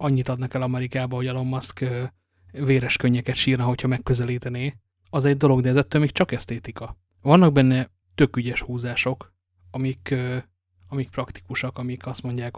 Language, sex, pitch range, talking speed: English, male, 120-130 Hz, 140 wpm